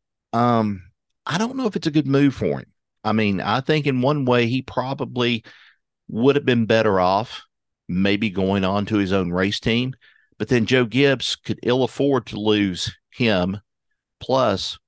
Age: 50-69